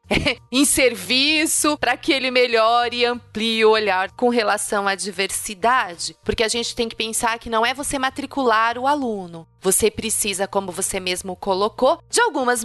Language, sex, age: Portuguese, female, 30-49